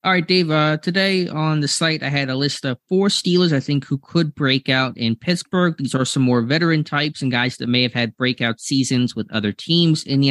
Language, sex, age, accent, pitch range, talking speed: English, male, 20-39, American, 110-130 Hz, 245 wpm